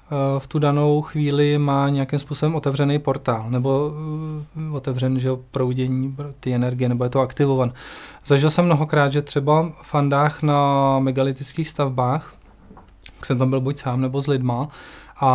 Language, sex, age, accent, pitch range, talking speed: Czech, male, 20-39, native, 130-145 Hz, 155 wpm